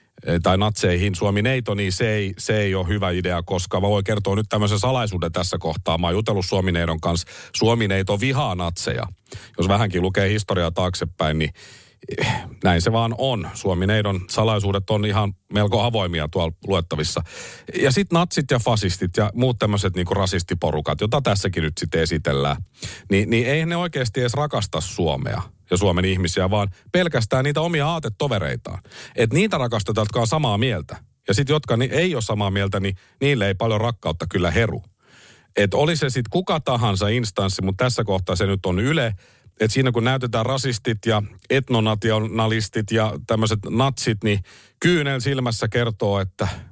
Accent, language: native, Finnish